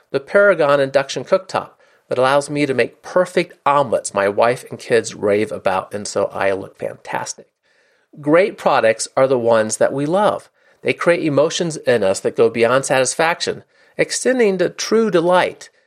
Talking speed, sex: 165 wpm, male